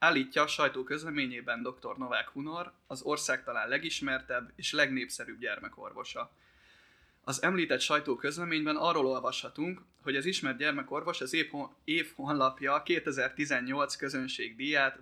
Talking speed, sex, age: 115 wpm, male, 20-39